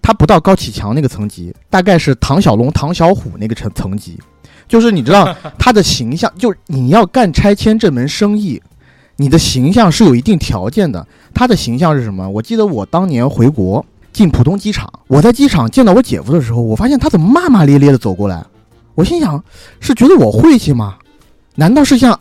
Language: Chinese